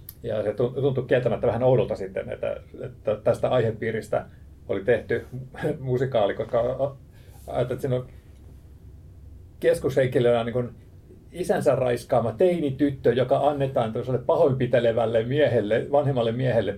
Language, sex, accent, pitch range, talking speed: Finnish, male, native, 110-130 Hz, 105 wpm